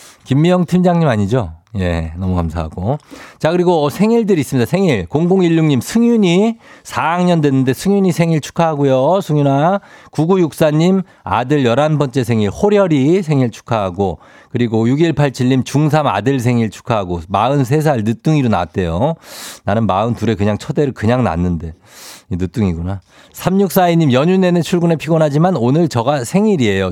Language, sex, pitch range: Korean, male, 115-165 Hz